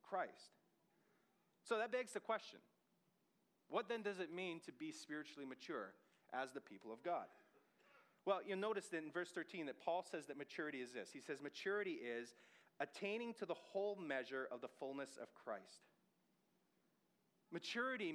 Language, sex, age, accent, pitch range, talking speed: English, male, 30-49, American, 155-205 Hz, 160 wpm